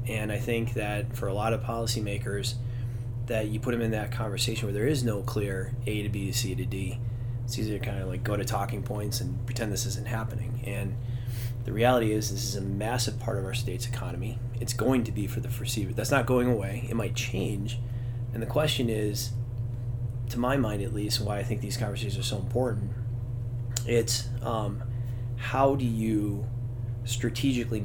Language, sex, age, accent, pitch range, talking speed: English, male, 30-49, American, 115-120 Hz, 200 wpm